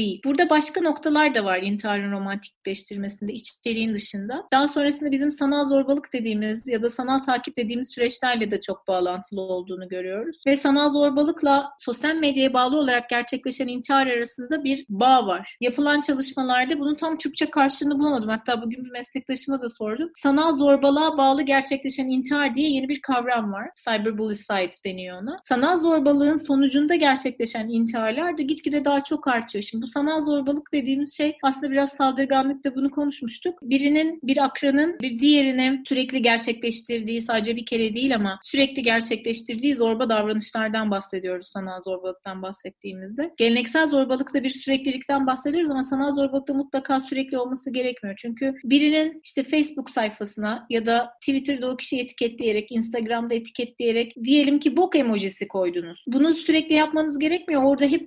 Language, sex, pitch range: Turkish, female, 230-285 Hz